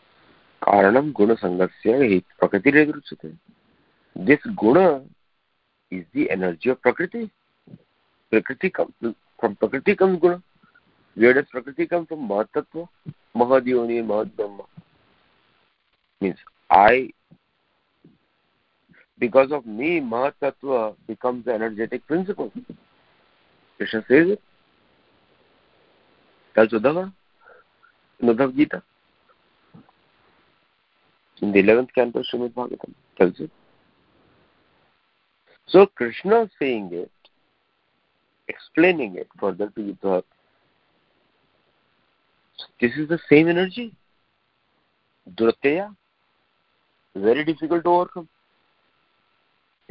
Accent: Indian